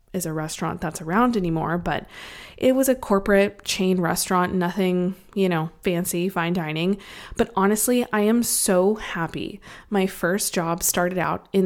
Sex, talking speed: female, 155 wpm